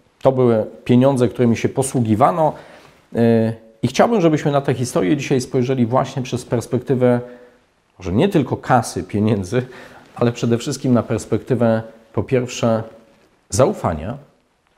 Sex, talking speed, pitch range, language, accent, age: male, 120 wpm, 115-145 Hz, Polish, native, 40-59